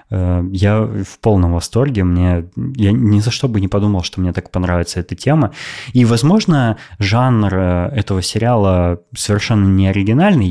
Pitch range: 90-115 Hz